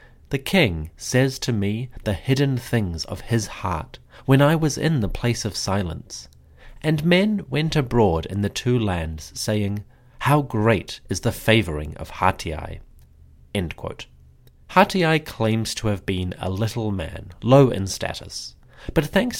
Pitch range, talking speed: 90-125 Hz, 155 wpm